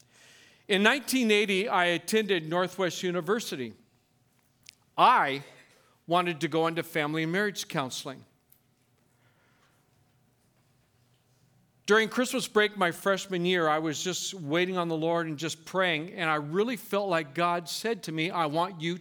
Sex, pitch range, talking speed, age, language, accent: male, 160-260 Hz, 135 wpm, 50-69, English, American